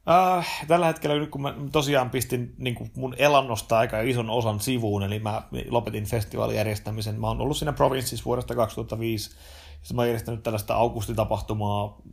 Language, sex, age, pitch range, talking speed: Finnish, male, 30-49, 110-130 Hz, 155 wpm